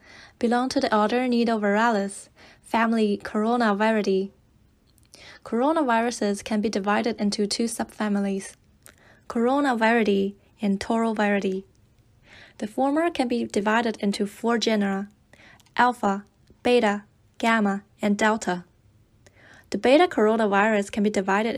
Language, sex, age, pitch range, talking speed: English, female, 20-39, 200-235 Hz, 100 wpm